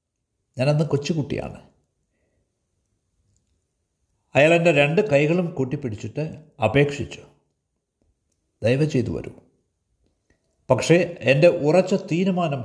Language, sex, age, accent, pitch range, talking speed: Malayalam, male, 60-79, native, 110-160 Hz, 65 wpm